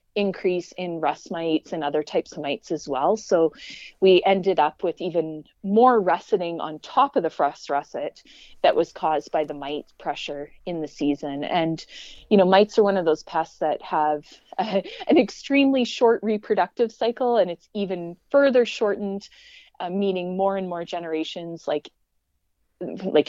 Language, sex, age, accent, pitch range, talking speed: English, female, 30-49, American, 155-215 Hz, 165 wpm